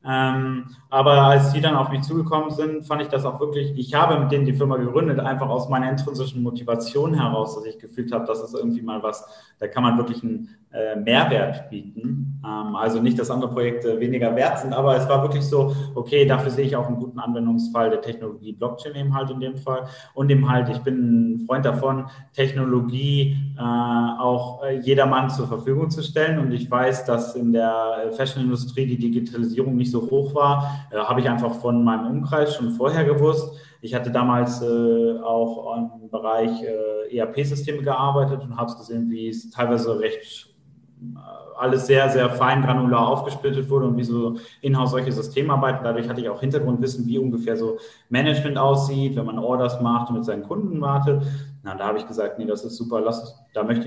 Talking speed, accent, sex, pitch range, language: 190 wpm, German, male, 115-135 Hz, German